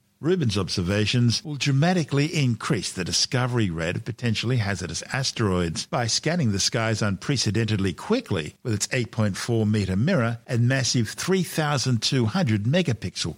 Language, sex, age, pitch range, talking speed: English, male, 50-69, 100-130 Hz, 110 wpm